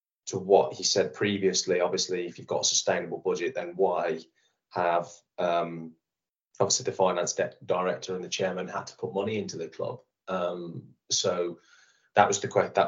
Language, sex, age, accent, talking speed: English, male, 20-39, British, 170 wpm